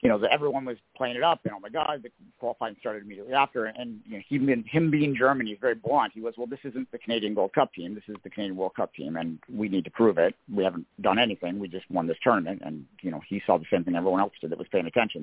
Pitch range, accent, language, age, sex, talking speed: 100-130 Hz, American, English, 50-69, male, 295 wpm